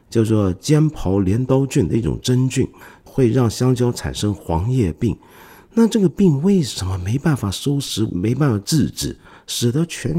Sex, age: male, 50-69